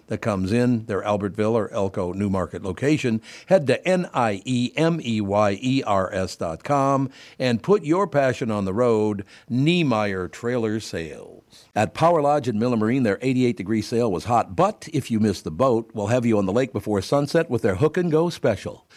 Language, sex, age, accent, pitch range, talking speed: English, male, 60-79, American, 105-145 Hz, 170 wpm